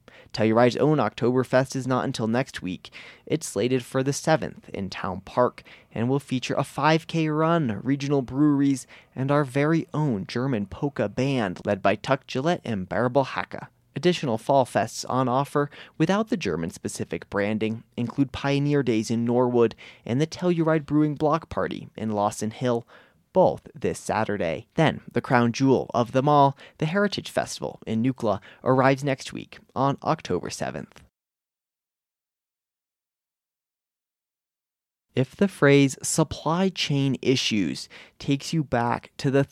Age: 30-49